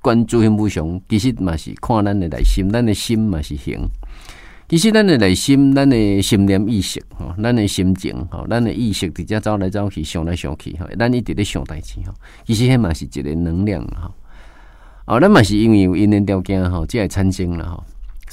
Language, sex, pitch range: Chinese, male, 85-120 Hz